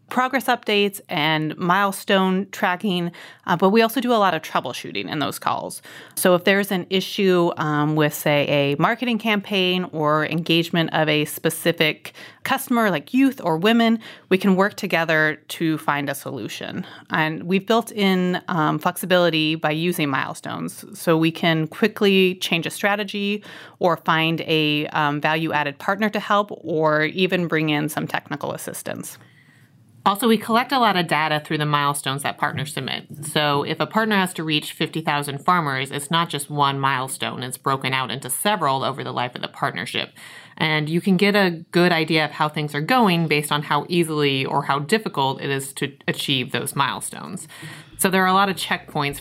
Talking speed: 180 wpm